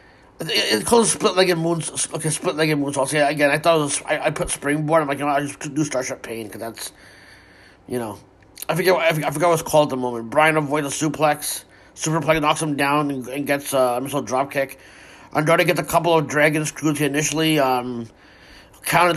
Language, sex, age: English, male, 30-49